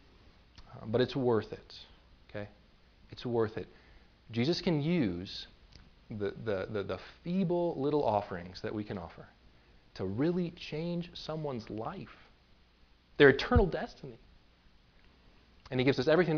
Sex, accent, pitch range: male, American, 90-115 Hz